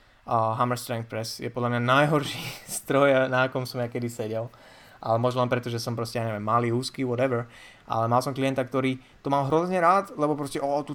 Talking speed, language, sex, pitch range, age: 220 wpm, Slovak, male, 120-140 Hz, 20-39